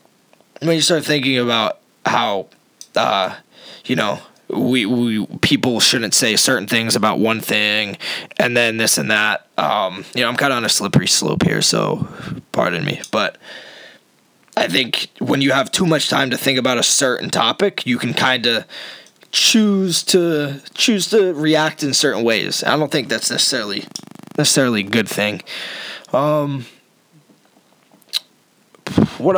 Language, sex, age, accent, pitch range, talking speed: English, male, 20-39, American, 120-160 Hz, 155 wpm